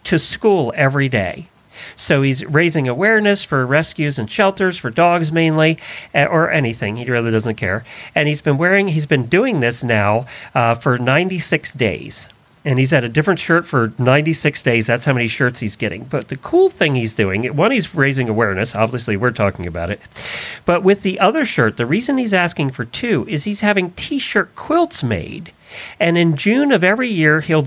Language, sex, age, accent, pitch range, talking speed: English, male, 40-59, American, 125-180 Hz, 190 wpm